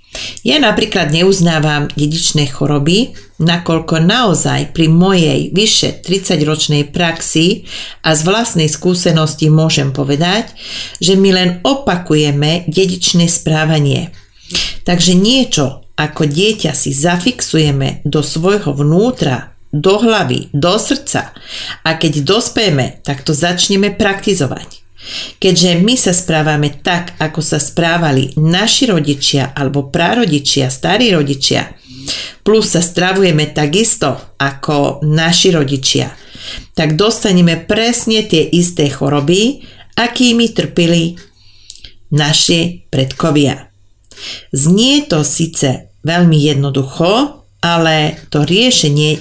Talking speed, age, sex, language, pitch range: 100 wpm, 40-59, female, Czech, 145-185 Hz